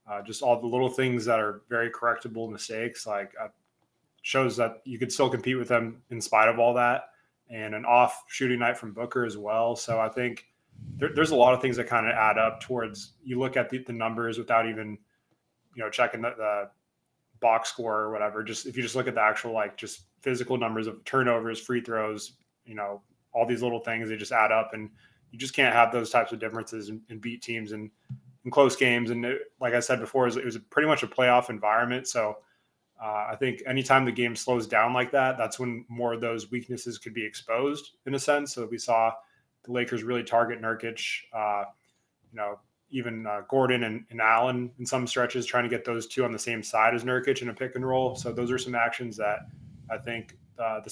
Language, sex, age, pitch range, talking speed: English, male, 20-39, 110-125 Hz, 225 wpm